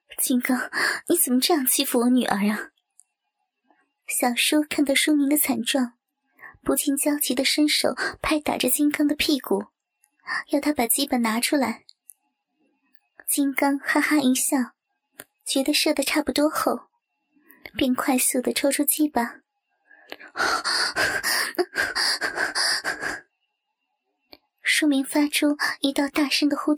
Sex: male